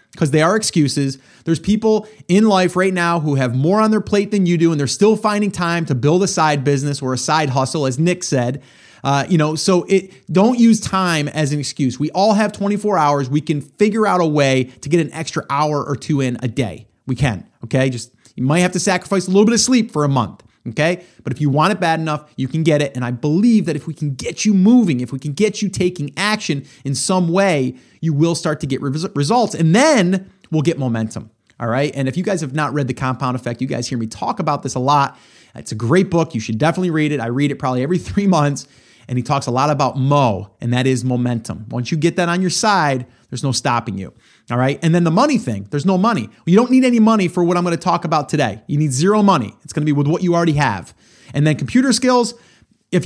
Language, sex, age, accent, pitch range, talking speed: English, male, 30-49, American, 130-190 Hz, 260 wpm